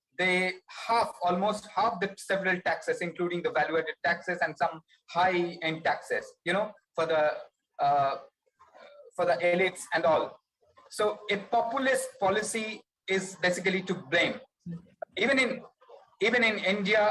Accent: Indian